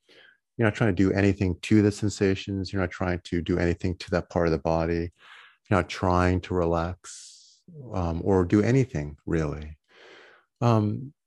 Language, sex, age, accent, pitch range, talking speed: English, male, 30-49, American, 90-105 Hz, 170 wpm